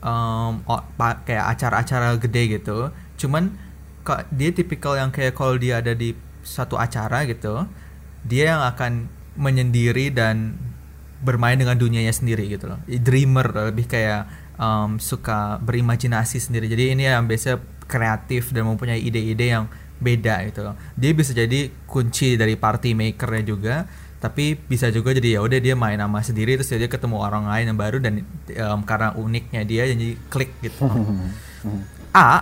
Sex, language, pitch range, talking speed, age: male, Indonesian, 110-130 Hz, 155 wpm, 20-39